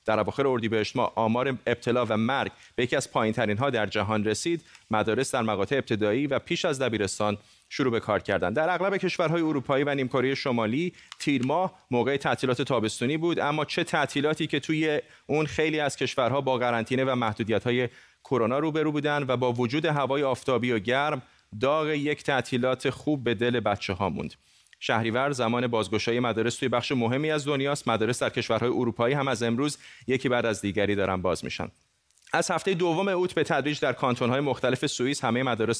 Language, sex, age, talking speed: Persian, male, 30-49, 185 wpm